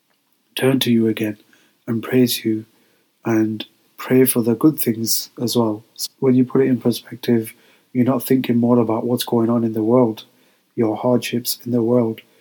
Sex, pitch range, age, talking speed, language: male, 115-125 Hz, 30-49, 180 wpm, English